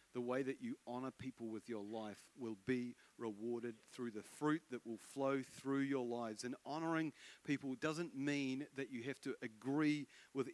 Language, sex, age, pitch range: English, male, 40-59, 110-140 Hz